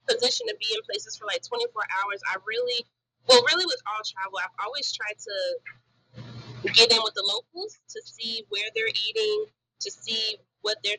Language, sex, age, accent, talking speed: English, female, 20-39, American, 185 wpm